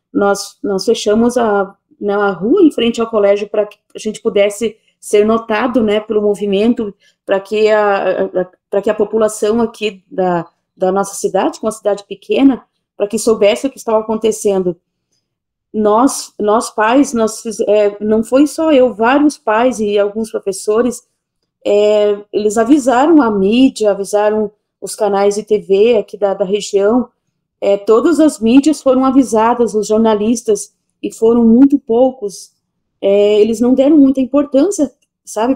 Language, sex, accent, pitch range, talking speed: Portuguese, female, Brazilian, 205-245 Hz, 150 wpm